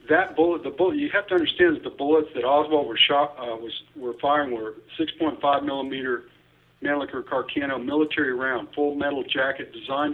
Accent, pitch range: American, 120-155 Hz